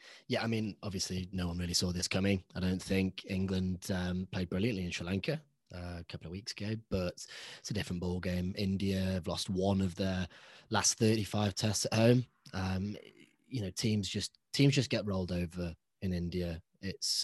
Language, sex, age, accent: English, male, 20-39, British